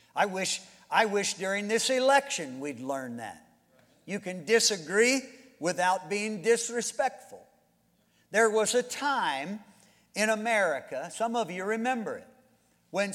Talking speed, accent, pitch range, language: 125 wpm, American, 165-235 Hz, English